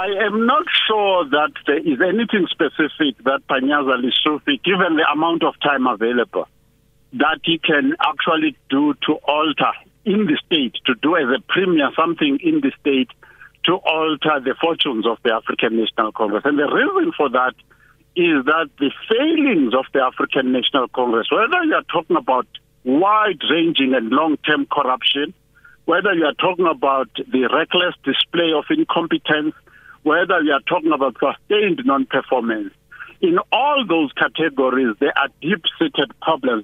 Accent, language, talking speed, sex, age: South African, English, 155 wpm, male, 50-69